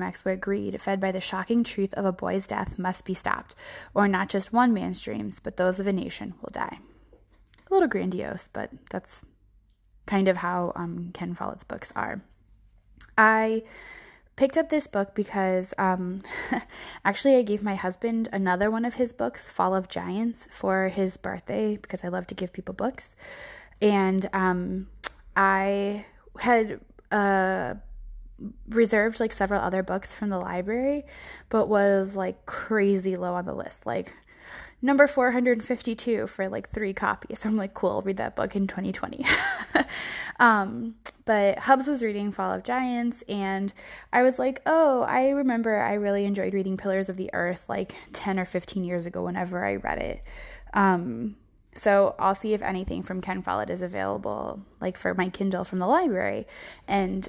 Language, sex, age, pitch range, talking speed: English, female, 20-39, 185-220 Hz, 170 wpm